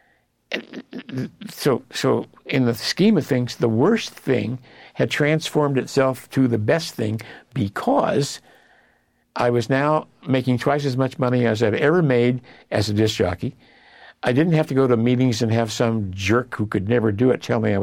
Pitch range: 115-150 Hz